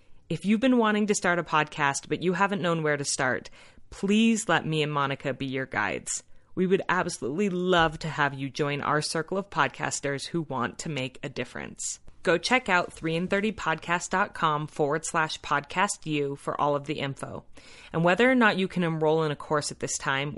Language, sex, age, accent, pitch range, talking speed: English, female, 30-49, American, 145-185 Hz, 205 wpm